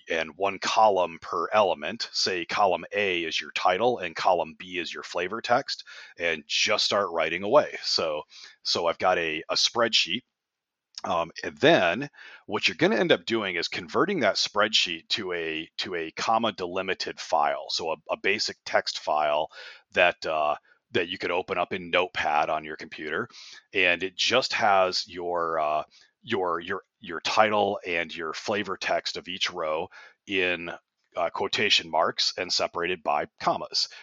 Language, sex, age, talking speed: English, male, 40-59, 165 wpm